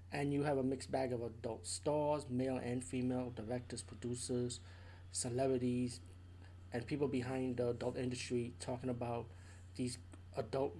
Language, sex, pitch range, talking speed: English, male, 110-135 Hz, 140 wpm